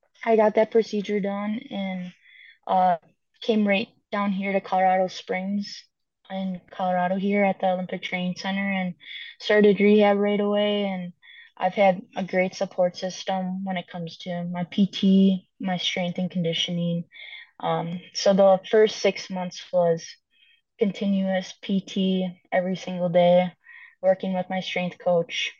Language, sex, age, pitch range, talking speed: English, female, 20-39, 175-200 Hz, 145 wpm